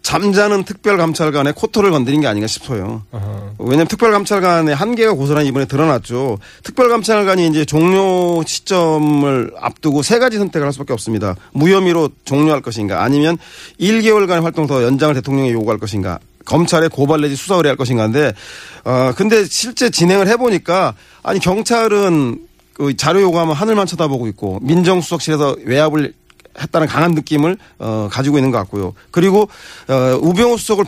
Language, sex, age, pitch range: Korean, male, 40-59, 135-195 Hz